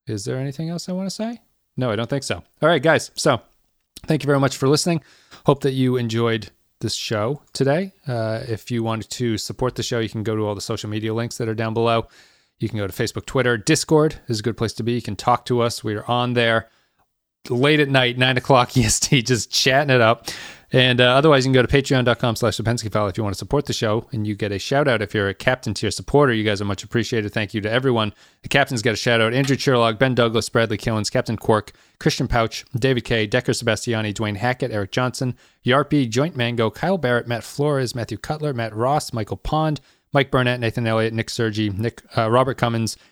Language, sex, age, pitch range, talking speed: English, male, 30-49, 110-130 Hz, 235 wpm